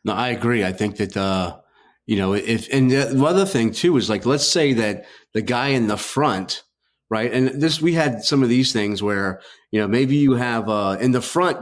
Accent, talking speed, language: American, 225 wpm, English